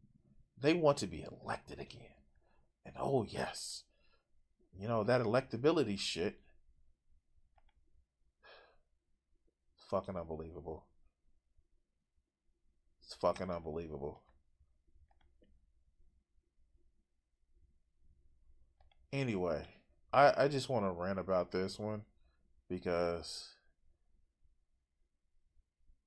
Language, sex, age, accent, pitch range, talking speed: English, male, 30-49, American, 70-105 Hz, 70 wpm